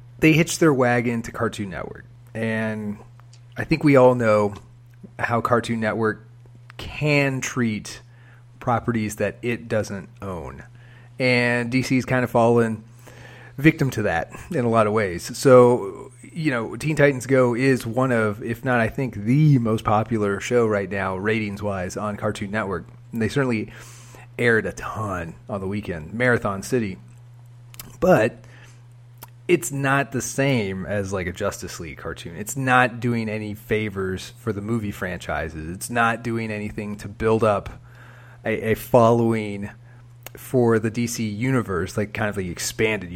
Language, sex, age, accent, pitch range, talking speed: English, male, 30-49, American, 105-125 Hz, 155 wpm